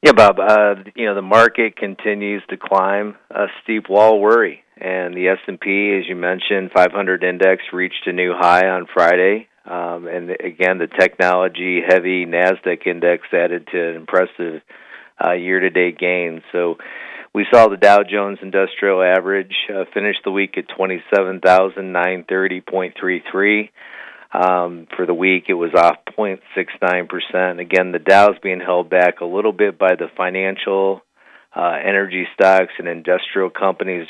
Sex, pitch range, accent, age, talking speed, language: male, 90-100 Hz, American, 40-59, 145 wpm, English